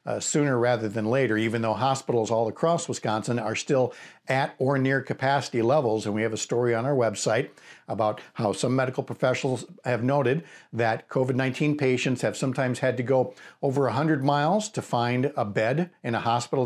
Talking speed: 185 wpm